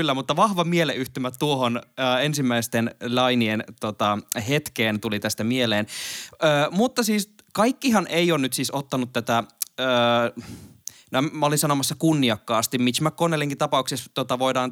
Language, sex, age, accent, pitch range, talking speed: Finnish, male, 20-39, native, 120-165 Hz, 130 wpm